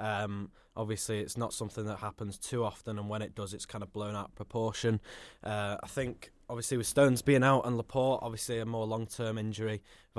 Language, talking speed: English, 205 wpm